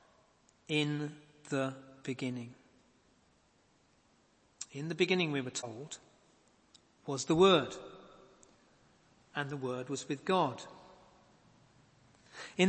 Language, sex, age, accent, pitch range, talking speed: English, male, 50-69, British, 150-215 Hz, 90 wpm